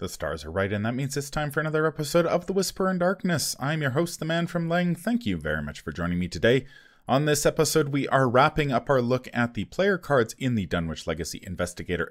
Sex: male